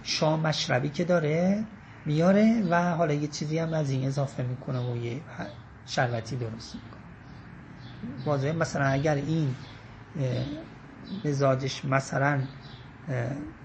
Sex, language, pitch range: male, Persian, 125-165 Hz